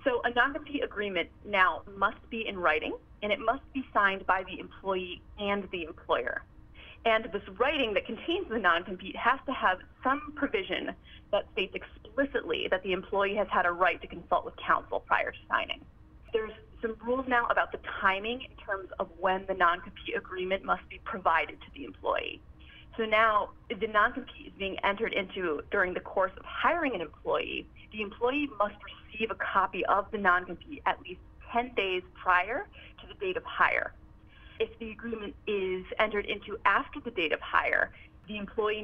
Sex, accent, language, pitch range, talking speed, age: female, American, English, 190-255 Hz, 180 wpm, 30-49